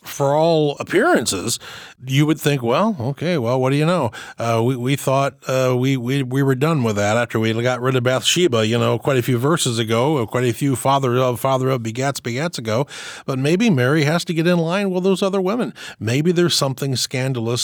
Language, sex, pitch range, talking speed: English, male, 115-160 Hz, 215 wpm